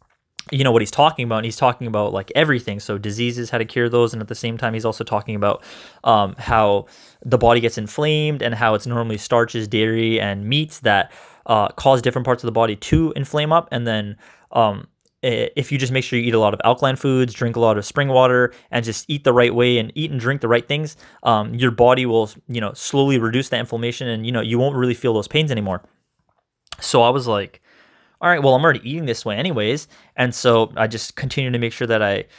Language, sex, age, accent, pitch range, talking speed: English, male, 20-39, American, 110-130 Hz, 240 wpm